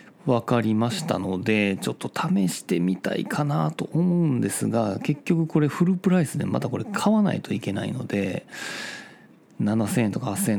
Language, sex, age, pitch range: Japanese, male, 40-59, 105-150 Hz